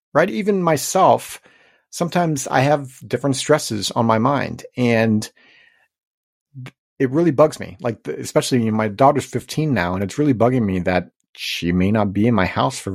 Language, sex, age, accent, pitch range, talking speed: English, male, 30-49, American, 110-140 Hz, 175 wpm